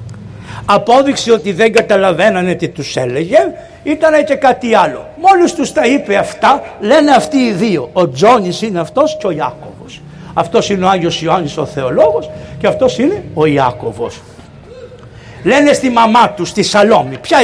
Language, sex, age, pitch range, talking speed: Greek, male, 60-79, 175-275 Hz, 160 wpm